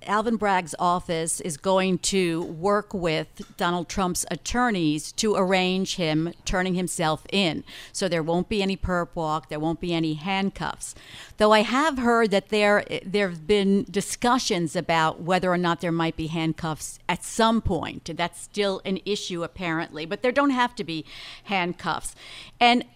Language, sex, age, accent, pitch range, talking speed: English, female, 50-69, American, 175-215 Hz, 165 wpm